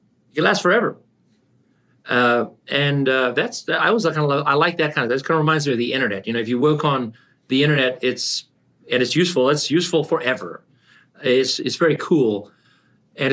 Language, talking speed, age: English, 205 wpm, 30-49